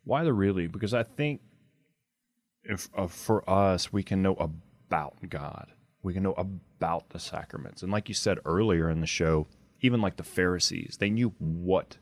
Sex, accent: male, American